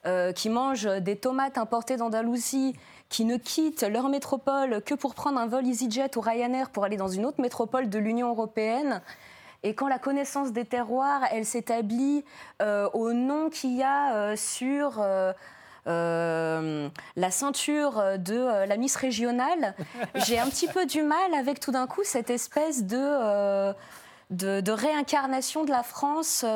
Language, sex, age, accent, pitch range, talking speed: French, female, 20-39, French, 210-270 Hz, 165 wpm